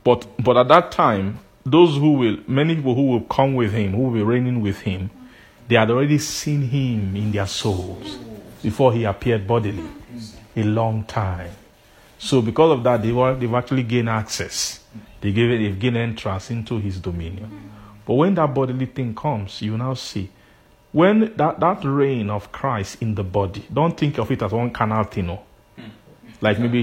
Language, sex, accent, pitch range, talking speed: English, male, Nigerian, 105-125 Hz, 185 wpm